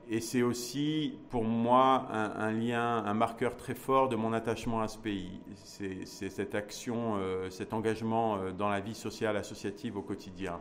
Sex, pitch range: male, 110-130 Hz